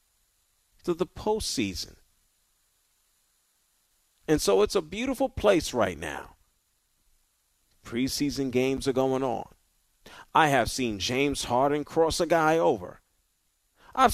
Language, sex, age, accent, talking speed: English, male, 40-59, American, 110 wpm